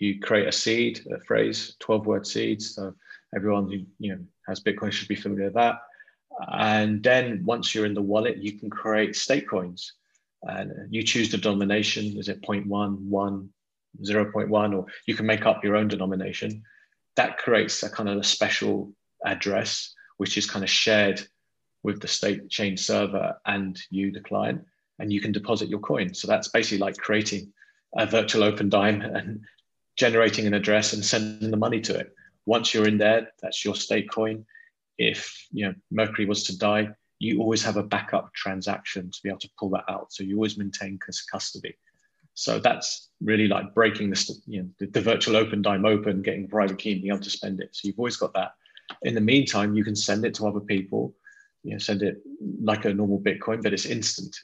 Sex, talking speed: male, 195 wpm